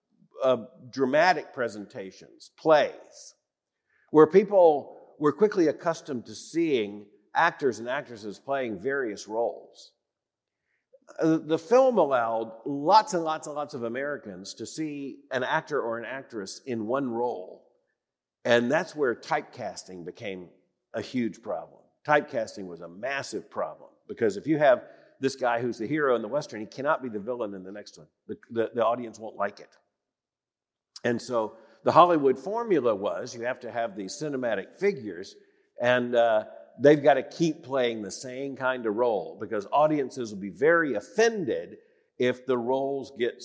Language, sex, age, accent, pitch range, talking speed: English, male, 50-69, American, 120-165 Hz, 155 wpm